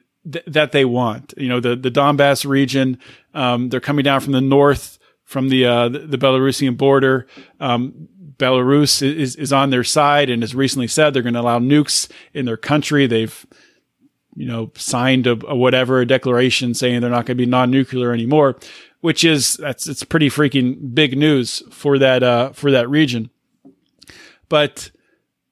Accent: American